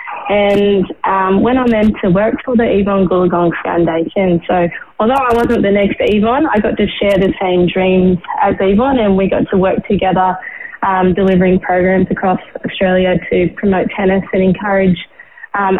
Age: 20-39